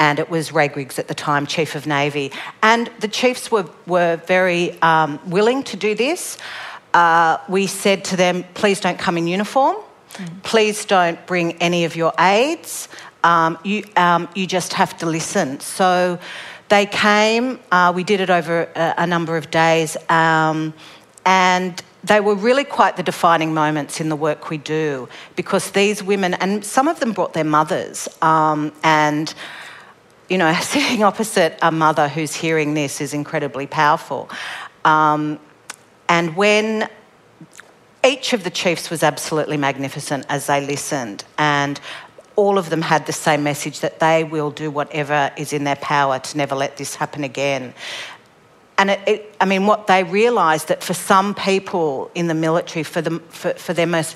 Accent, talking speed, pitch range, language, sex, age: Australian, 170 wpm, 150-190 Hz, English, female, 50-69